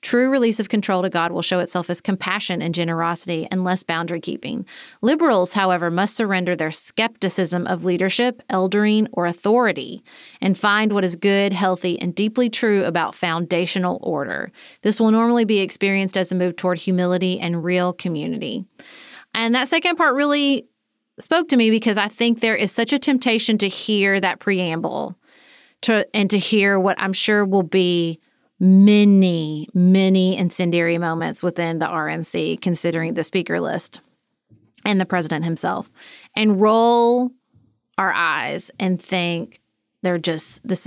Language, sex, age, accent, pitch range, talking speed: English, female, 30-49, American, 180-225 Hz, 155 wpm